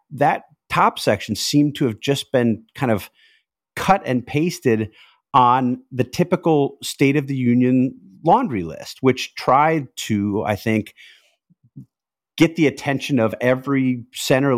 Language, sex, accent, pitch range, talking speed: English, male, American, 95-130 Hz, 135 wpm